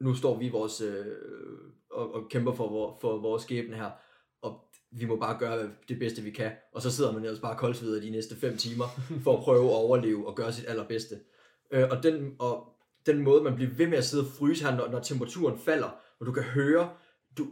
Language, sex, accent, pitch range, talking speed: Danish, male, native, 115-155 Hz, 230 wpm